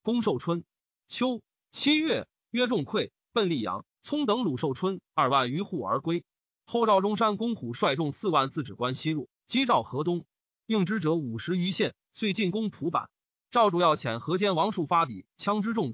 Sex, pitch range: male, 150-210 Hz